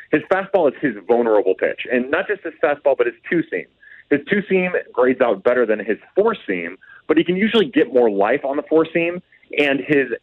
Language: English